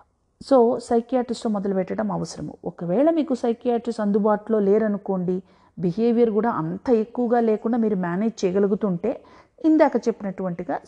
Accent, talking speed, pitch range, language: native, 110 wpm, 200-255 Hz, Telugu